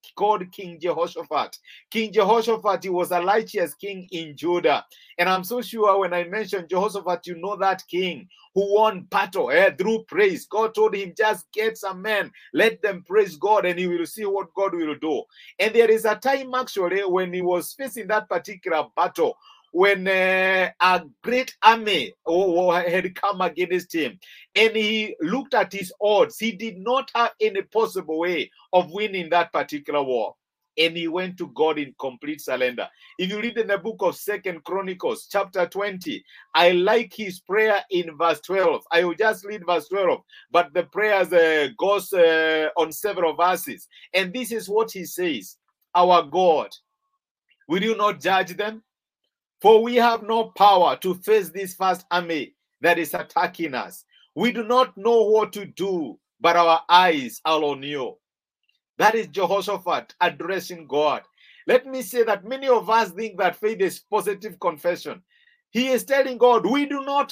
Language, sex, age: English, male, 50-69